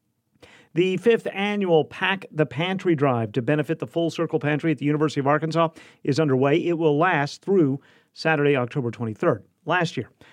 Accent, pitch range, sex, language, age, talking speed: American, 125-165 Hz, male, English, 40-59, 170 wpm